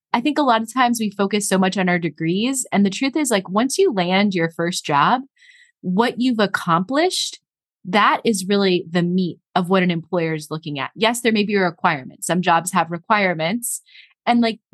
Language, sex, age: English, female, 20-39